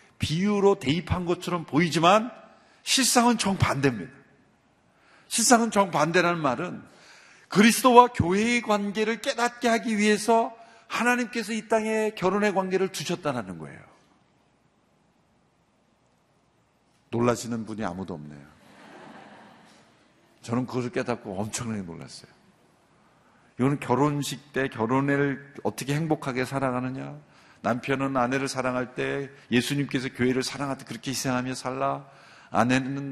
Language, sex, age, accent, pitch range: Korean, male, 50-69, native, 135-215 Hz